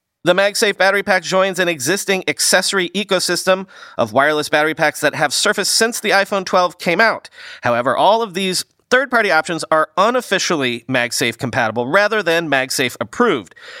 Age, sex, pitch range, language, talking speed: 30-49, male, 130-195 Hz, English, 150 wpm